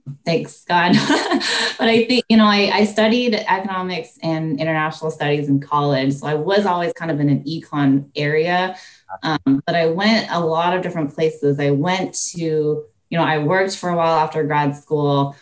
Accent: American